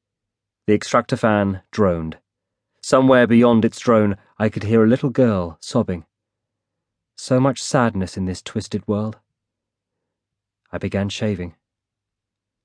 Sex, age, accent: male, 30-49, British